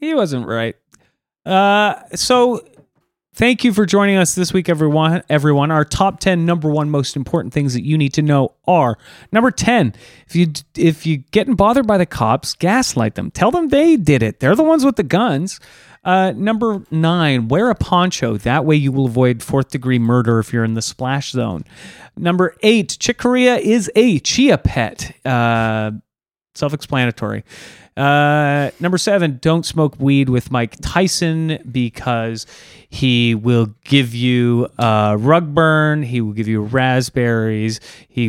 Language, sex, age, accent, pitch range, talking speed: English, male, 30-49, American, 120-175 Hz, 165 wpm